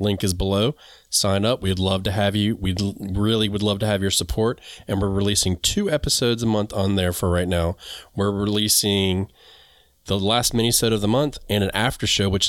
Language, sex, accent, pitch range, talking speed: English, male, American, 90-110 Hz, 210 wpm